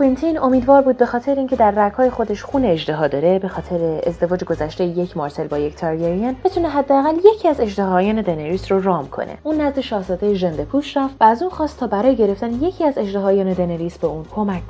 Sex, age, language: female, 30-49, Persian